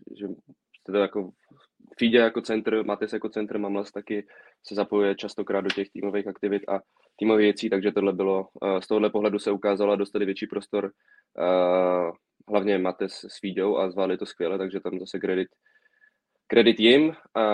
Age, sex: 20-39, male